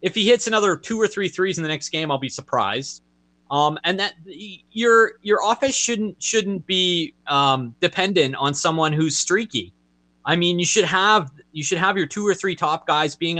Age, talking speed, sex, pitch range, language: 20-39, 200 wpm, male, 140-200 Hz, English